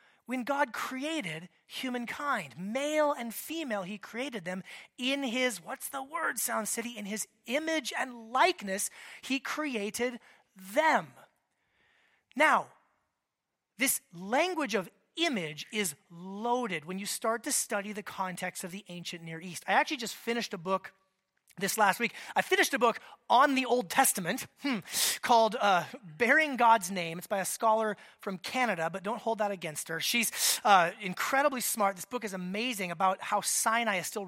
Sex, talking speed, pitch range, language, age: male, 160 wpm, 190-255 Hz, English, 30-49